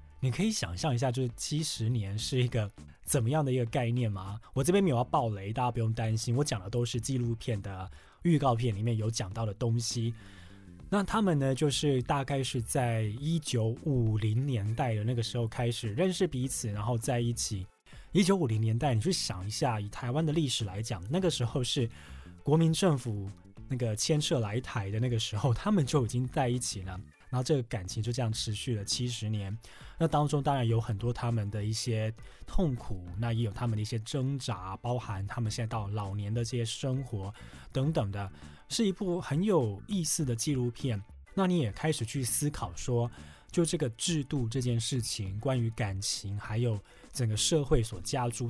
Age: 20-39